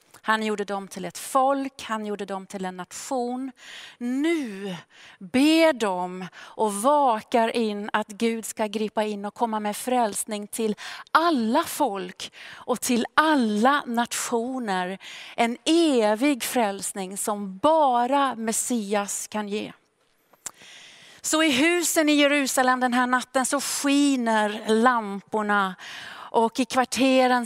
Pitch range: 205-255 Hz